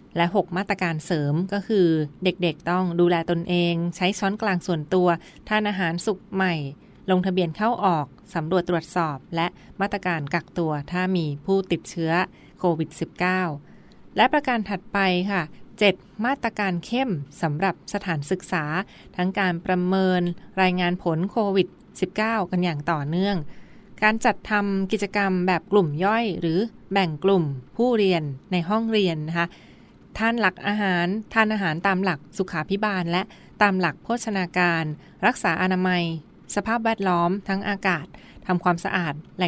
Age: 20-39